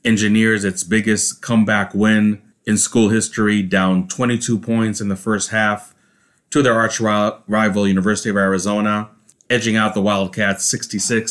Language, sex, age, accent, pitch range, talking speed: English, male, 30-49, American, 95-110 Hz, 145 wpm